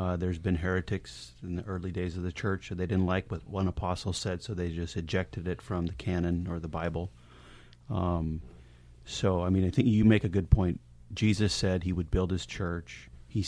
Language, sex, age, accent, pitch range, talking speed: English, male, 30-49, American, 85-105 Hz, 220 wpm